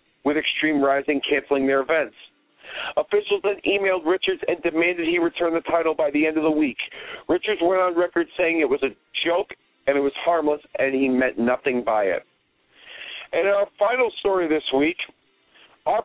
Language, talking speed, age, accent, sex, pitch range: English, 180 wpm, 50-69, American, male, 150-215 Hz